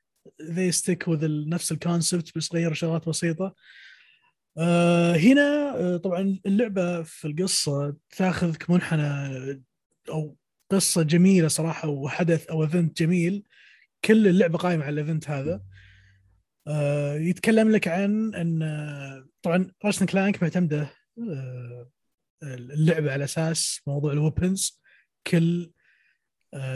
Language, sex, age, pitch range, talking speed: Arabic, male, 20-39, 150-190 Hz, 110 wpm